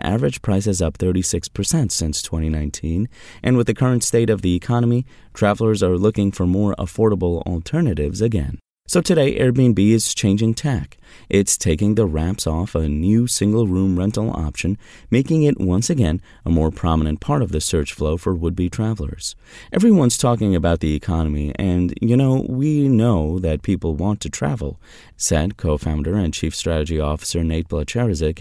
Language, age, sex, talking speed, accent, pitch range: English, 30-49, male, 165 wpm, American, 80-110 Hz